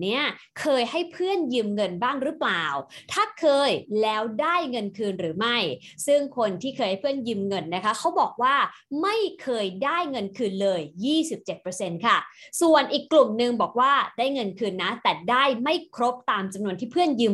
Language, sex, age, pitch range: English, female, 20-39, 205-285 Hz